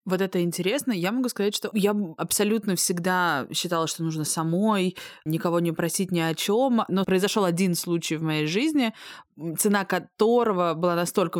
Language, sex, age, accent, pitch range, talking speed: Russian, female, 20-39, native, 165-220 Hz, 165 wpm